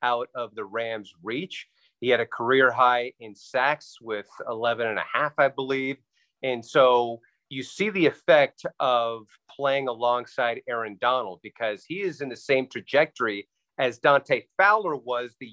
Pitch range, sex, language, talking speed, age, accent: 120-145 Hz, male, English, 160 wpm, 30-49, American